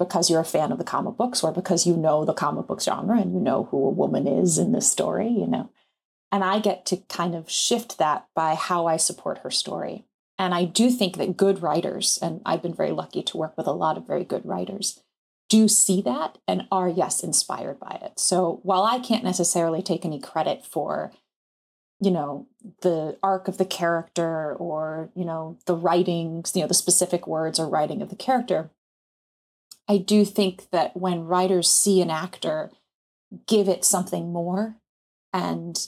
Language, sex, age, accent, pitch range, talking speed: English, female, 30-49, American, 170-195 Hz, 195 wpm